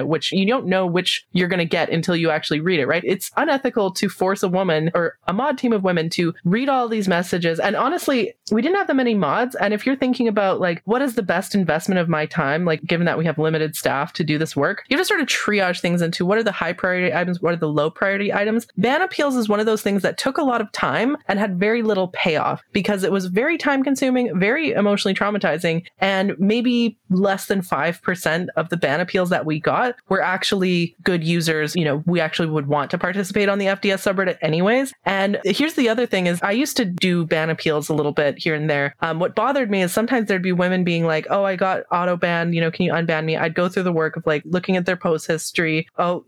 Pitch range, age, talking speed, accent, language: 170-225 Hz, 20-39, 250 wpm, American, English